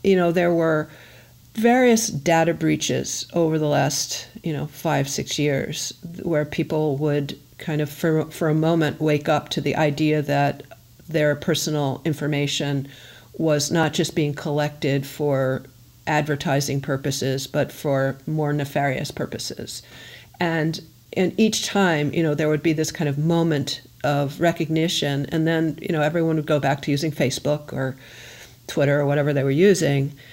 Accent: American